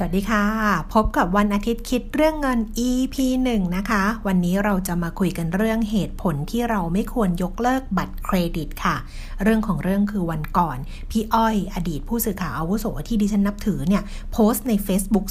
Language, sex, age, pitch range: Thai, female, 60-79, 190-240 Hz